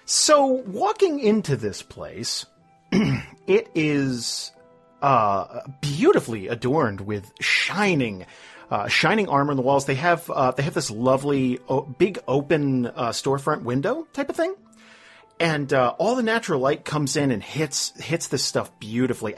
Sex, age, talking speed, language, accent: male, 40-59, 150 wpm, English, American